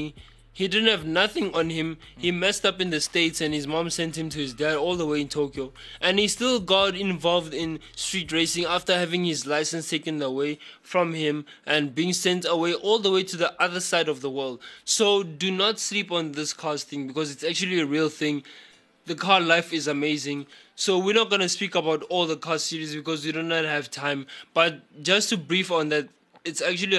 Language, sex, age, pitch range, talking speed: English, male, 20-39, 150-185 Hz, 220 wpm